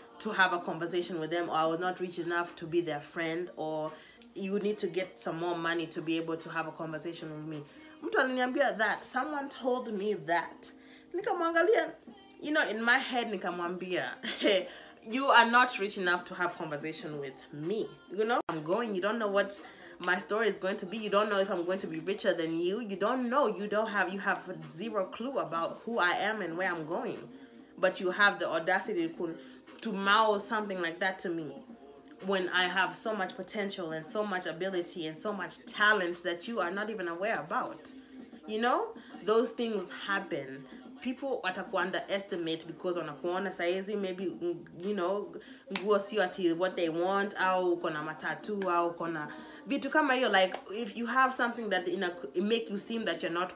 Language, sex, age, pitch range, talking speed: English, female, 20-39, 175-220 Hz, 195 wpm